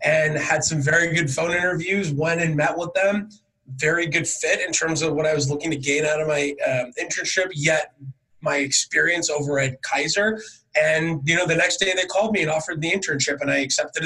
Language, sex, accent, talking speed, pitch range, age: English, male, American, 220 wpm, 145-185 Hz, 20-39